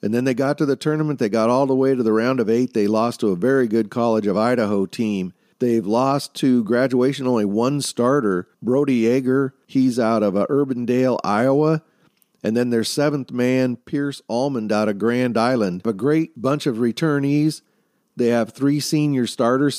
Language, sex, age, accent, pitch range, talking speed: English, male, 40-59, American, 115-140 Hz, 190 wpm